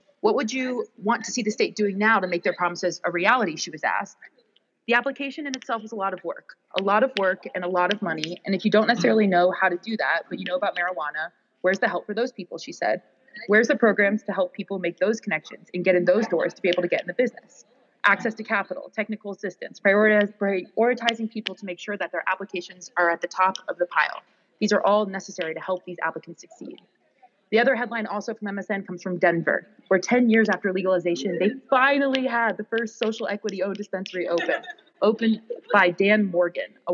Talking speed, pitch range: 225 wpm, 180-230 Hz